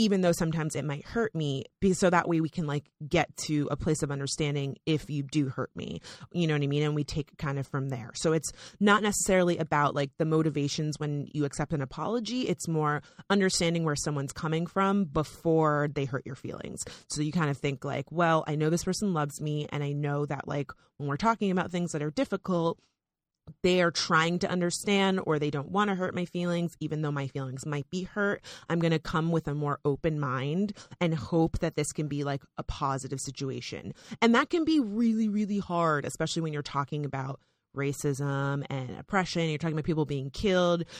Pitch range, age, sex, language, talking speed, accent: 145-185 Hz, 30-49, female, English, 215 wpm, American